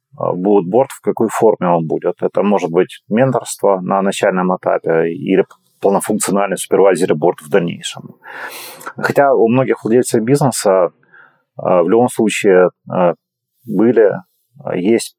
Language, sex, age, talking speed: Ukrainian, male, 30-49, 120 wpm